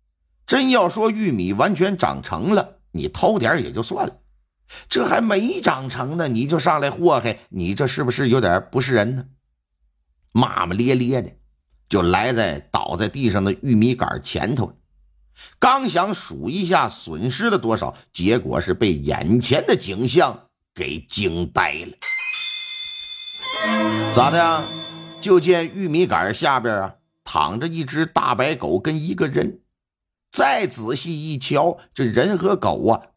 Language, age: Chinese, 50-69